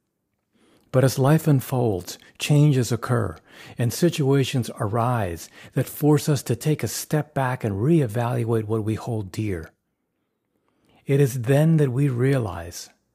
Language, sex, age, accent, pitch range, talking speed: English, male, 50-69, American, 110-140 Hz, 130 wpm